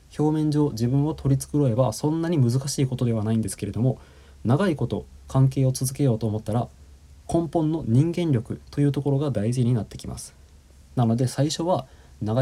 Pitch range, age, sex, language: 105-135 Hz, 20-39, male, Japanese